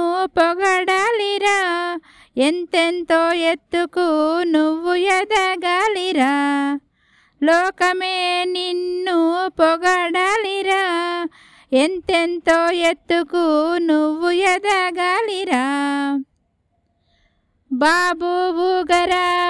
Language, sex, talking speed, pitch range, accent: Telugu, female, 45 wpm, 315-365 Hz, native